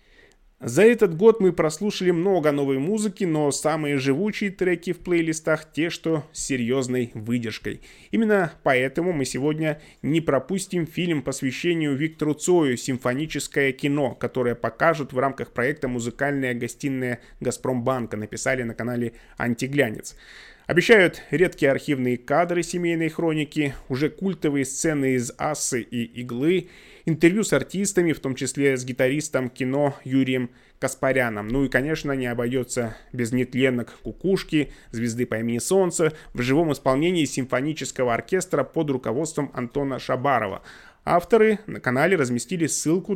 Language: Russian